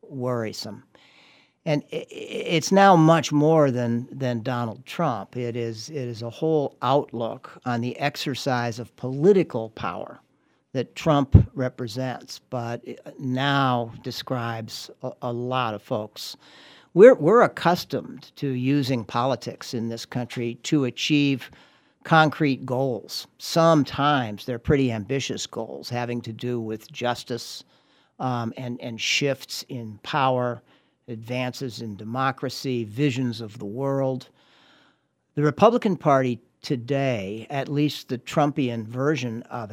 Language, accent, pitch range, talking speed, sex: English, American, 120-145 Hz, 120 wpm, male